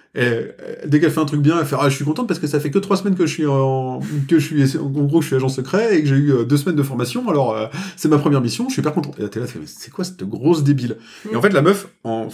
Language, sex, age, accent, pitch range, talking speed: French, male, 30-49, French, 125-165 Hz, 320 wpm